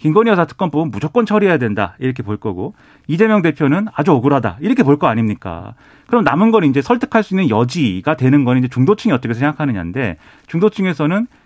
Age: 40-59